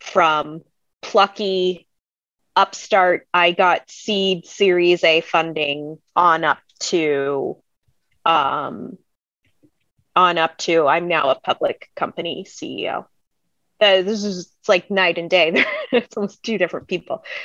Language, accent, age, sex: English, American, 20-39, female